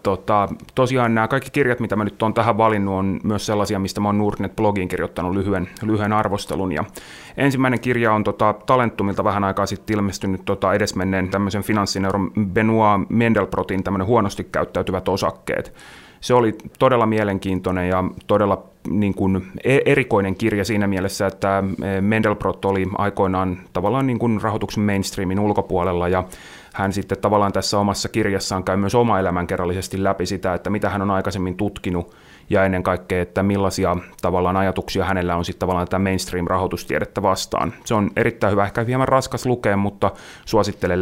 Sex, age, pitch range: male, 30-49, 95-110 Hz